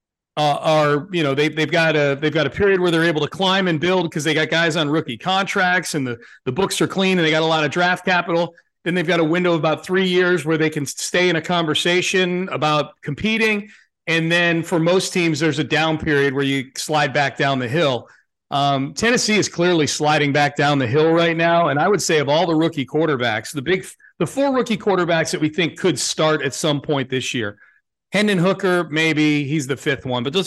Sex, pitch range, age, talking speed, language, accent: male, 140-170 Hz, 40-59, 235 wpm, English, American